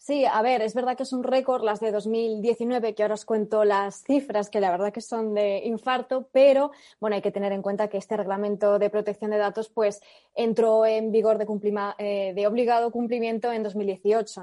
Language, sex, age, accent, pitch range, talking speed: Spanish, female, 20-39, Spanish, 205-240 Hz, 210 wpm